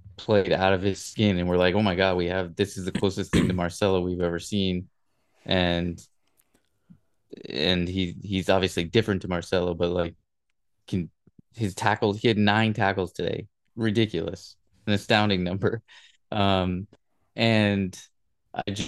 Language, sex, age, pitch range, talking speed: English, male, 20-39, 95-110 Hz, 155 wpm